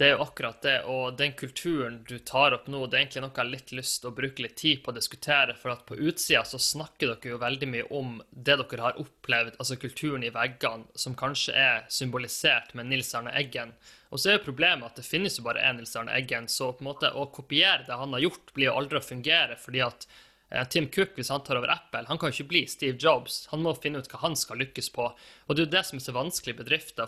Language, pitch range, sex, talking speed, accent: English, 125-150 Hz, male, 250 wpm, Swedish